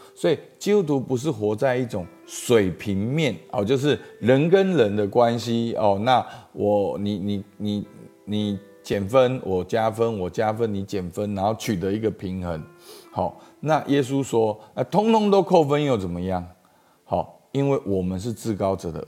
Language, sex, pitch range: Chinese, male, 95-130 Hz